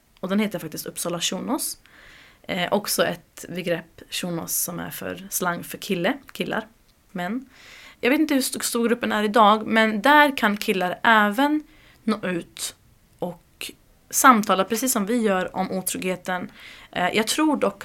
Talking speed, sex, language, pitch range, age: 155 wpm, female, Swedish, 175-215 Hz, 20-39